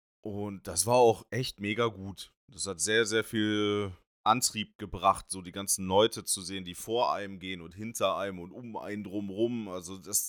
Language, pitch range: German, 90-115 Hz